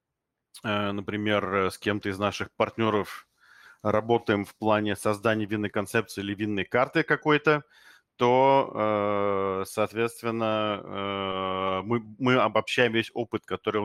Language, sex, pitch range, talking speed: Russian, male, 105-120 Hz, 105 wpm